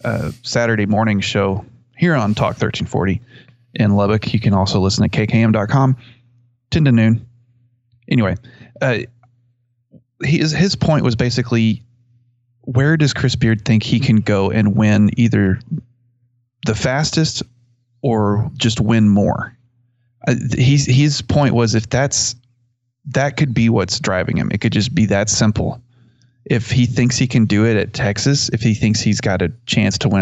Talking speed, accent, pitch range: 160 wpm, American, 105-125 Hz